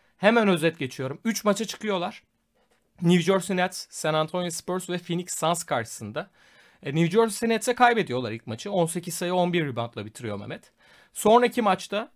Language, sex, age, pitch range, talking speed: Turkish, male, 40-59, 145-195 Hz, 150 wpm